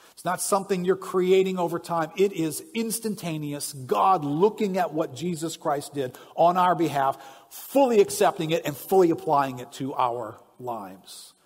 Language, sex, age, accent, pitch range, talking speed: English, male, 50-69, American, 135-185 Hz, 155 wpm